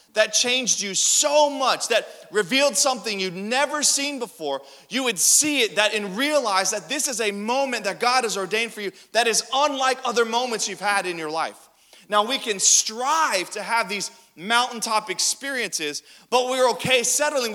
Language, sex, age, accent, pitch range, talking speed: English, male, 30-49, American, 215-260 Hz, 180 wpm